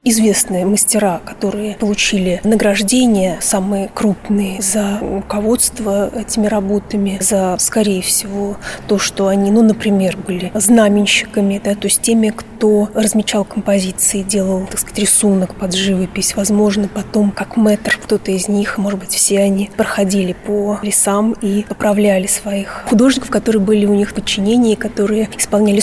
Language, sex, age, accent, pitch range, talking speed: Russian, female, 20-39, native, 200-220 Hz, 135 wpm